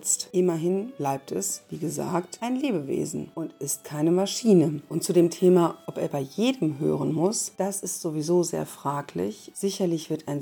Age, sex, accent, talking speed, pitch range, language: 40-59, female, German, 165 wpm, 150-185 Hz, German